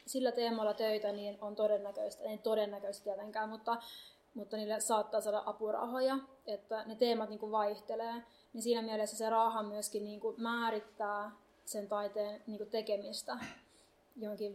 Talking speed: 135 wpm